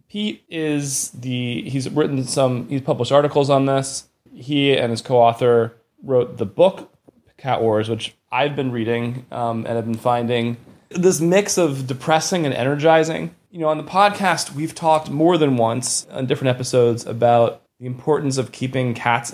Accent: American